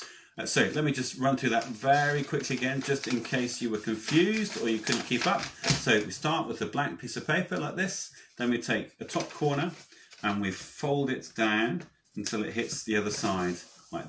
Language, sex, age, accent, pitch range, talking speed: English, male, 30-49, British, 100-130 Hz, 215 wpm